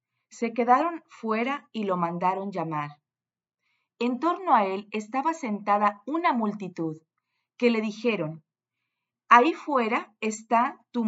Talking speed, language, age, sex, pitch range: 120 wpm, Spanish, 40-59, female, 170-250 Hz